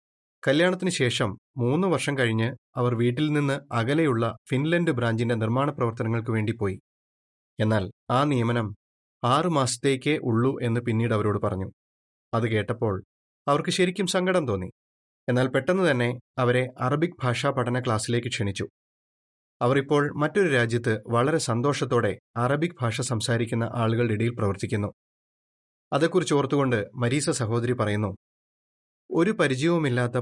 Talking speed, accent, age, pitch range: 115 wpm, native, 30-49, 110-145 Hz